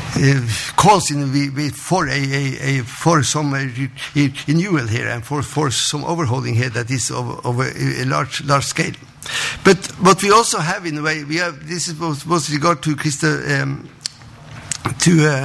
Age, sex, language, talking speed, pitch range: 50-69, male, English, 180 wpm, 135-165 Hz